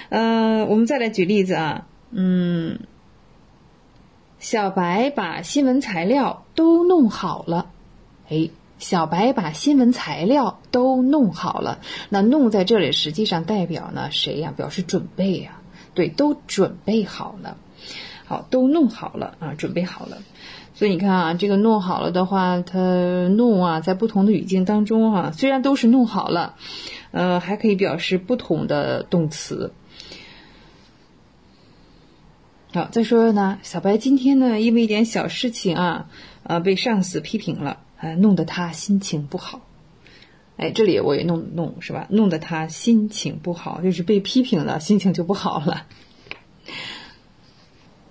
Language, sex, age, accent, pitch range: English, female, 20-39, Chinese, 175-225 Hz